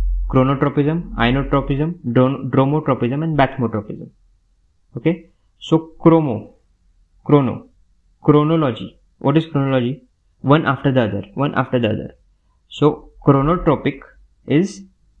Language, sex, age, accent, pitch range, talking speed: English, male, 20-39, Indian, 110-150 Hz, 95 wpm